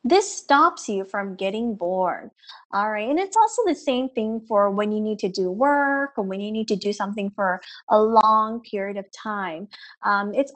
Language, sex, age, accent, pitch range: Chinese, female, 20-39, American, 200-275 Hz